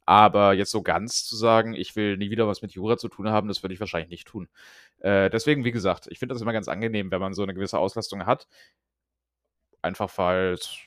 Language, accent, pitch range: German, German, 95-125 Hz